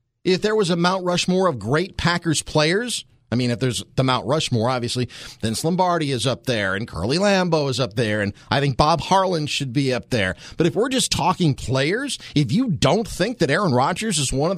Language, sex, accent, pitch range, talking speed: English, male, American, 130-180 Hz, 220 wpm